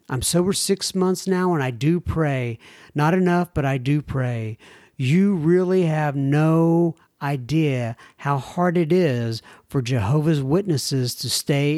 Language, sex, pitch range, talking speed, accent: English, male, 130-165 Hz, 150 wpm, American